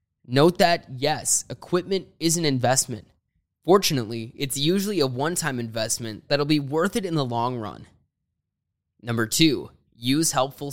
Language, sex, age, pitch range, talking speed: English, male, 20-39, 120-155 Hz, 140 wpm